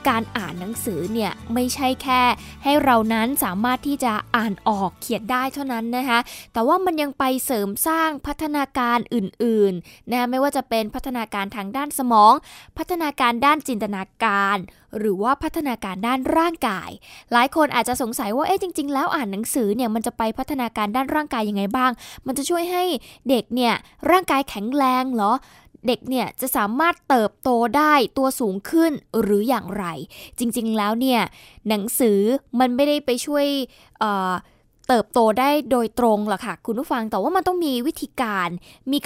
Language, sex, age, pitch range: Thai, female, 10-29, 220-280 Hz